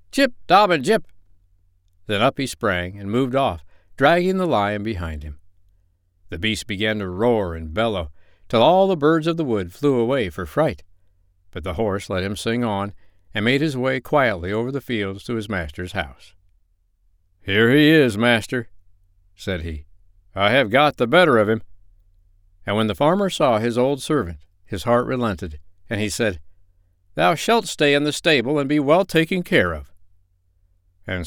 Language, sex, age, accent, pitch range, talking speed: English, male, 60-79, American, 90-125 Hz, 175 wpm